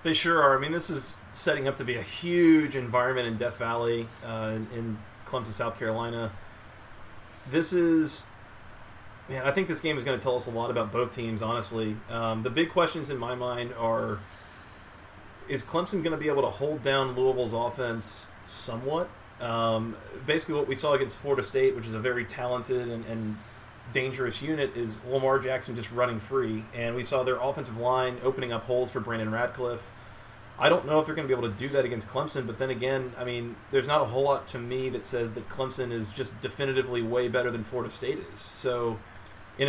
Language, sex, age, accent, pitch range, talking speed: English, male, 30-49, American, 115-135 Hz, 205 wpm